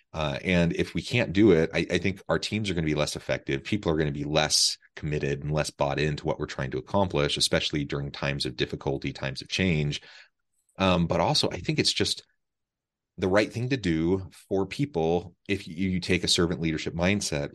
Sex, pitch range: male, 75-90 Hz